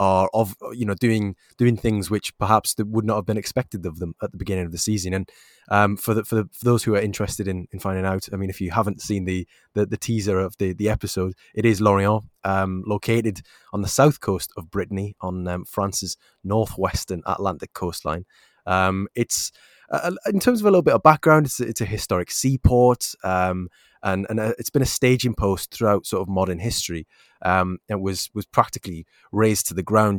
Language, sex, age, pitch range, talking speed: English, male, 20-39, 95-110 Hz, 215 wpm